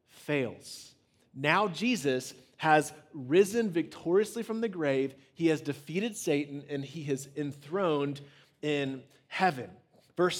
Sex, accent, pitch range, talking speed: male, American, 150-185 Hz, 115 wpm